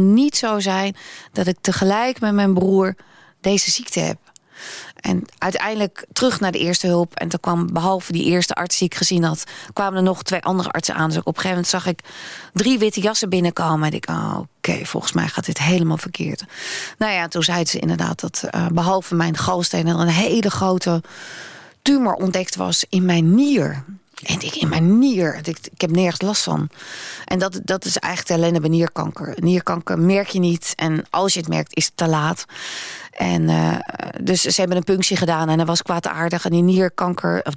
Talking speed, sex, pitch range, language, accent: 205 wpm, female, 170-190 Hz, Dutch, Dutch